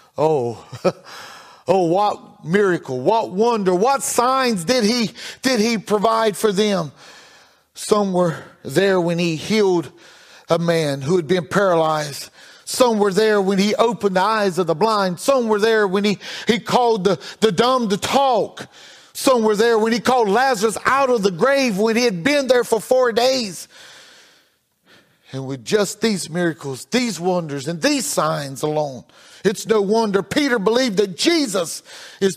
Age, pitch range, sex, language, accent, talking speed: 40-59, 185-245 Hz, male, English, American, 165 wpm